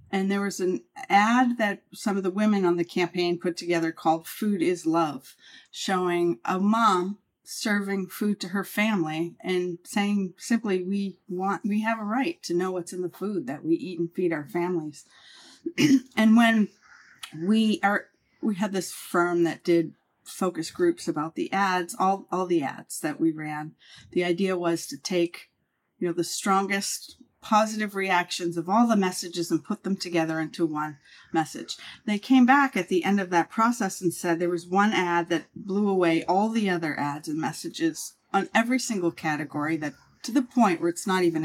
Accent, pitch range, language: American, 170-215 Hz, English